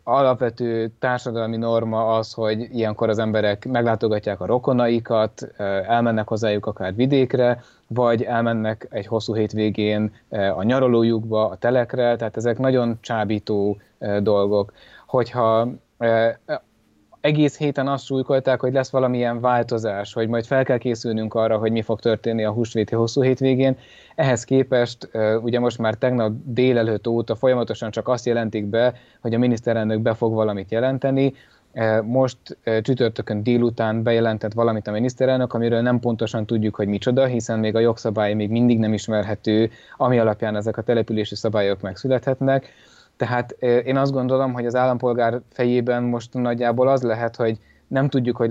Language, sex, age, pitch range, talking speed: Hungarian, male, 20-39, 110-125 Hz, 140 wpm